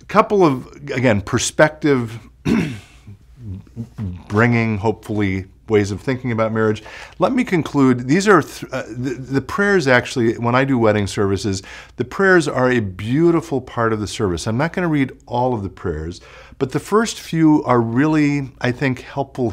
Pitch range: 110-140 Hz